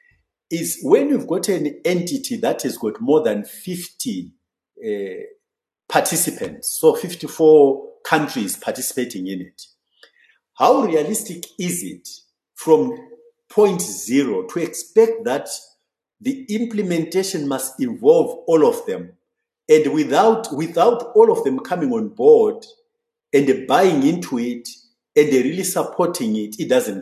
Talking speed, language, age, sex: 125 wpm, English, 50-69, male